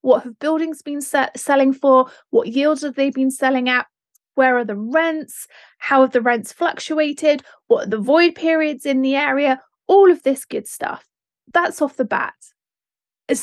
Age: 30-49